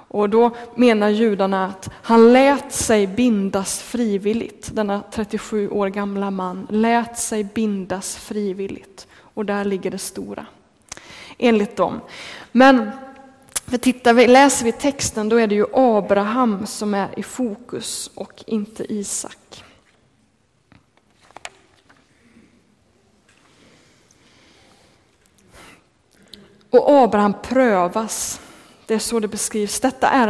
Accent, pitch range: native, 205-255 Hz